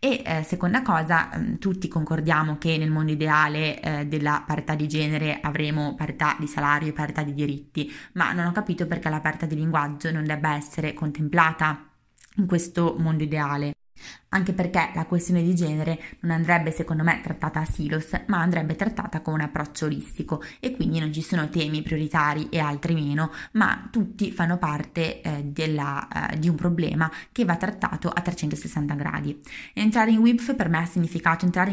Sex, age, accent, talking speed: female, 20-39, native, 180 wpm